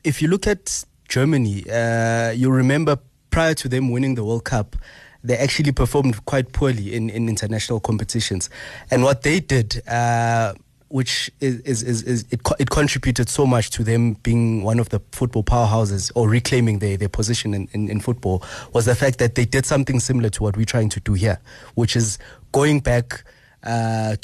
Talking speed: 190 wpm